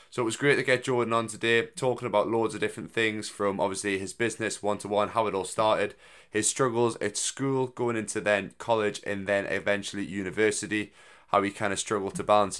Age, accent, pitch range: 20-39, British, 95-115 Hz